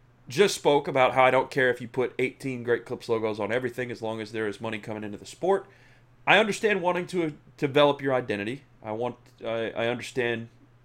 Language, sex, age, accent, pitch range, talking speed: English, male, 30-49, American, 115-145 Hz, 210 wpm